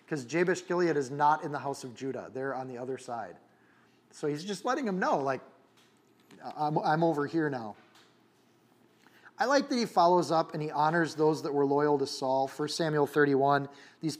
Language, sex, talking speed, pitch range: English, male, 195 wpm, 140-170 Hz